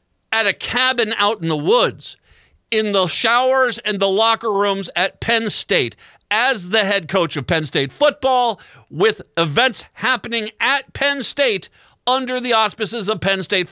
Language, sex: English, male